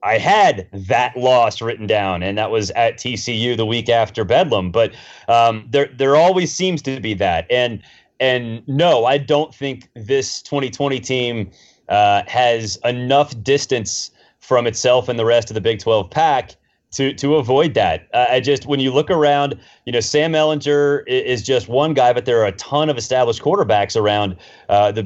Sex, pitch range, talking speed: male, 125-170 Hz, 185 wpm